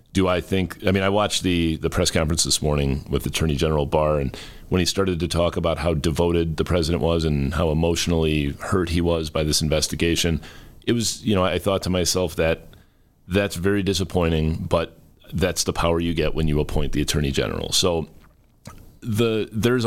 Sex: male